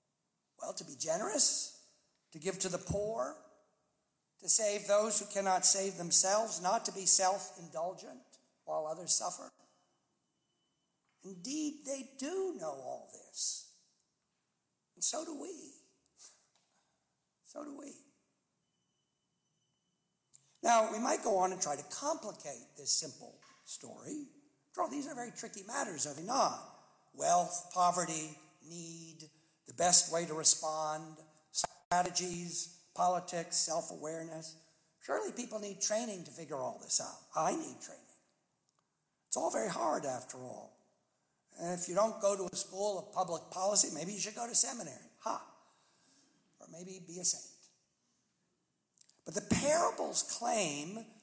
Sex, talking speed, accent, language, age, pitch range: male, 130 wpm, American, English, 60-79, 175-235 Hz